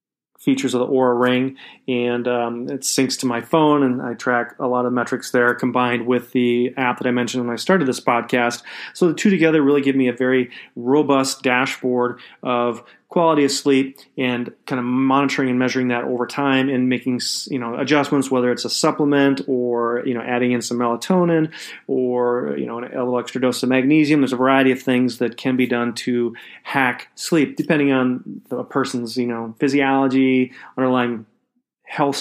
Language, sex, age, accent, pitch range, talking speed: English, male, 30-49, American, 125-140 Hz, 190 wpm